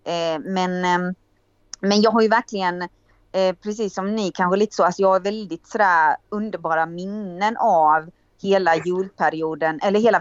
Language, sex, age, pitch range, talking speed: Swedish, female, 30-49, 160-195 Hz, 140 wpm